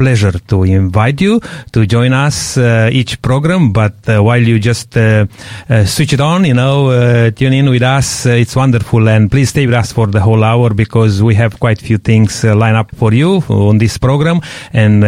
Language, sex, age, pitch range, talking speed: English, male, 30-49, 110-135 Hz, 215 wpm